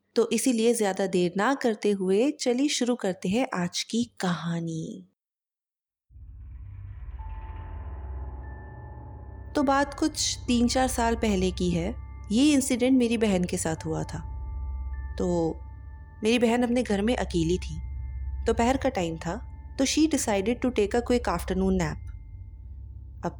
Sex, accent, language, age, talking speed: female, native, Hindi, 30-49, 135 wpm